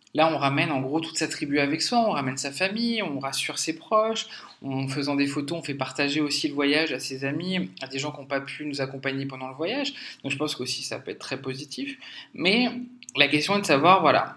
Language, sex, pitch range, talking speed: French, male, 130-155 Hz, 245 wpm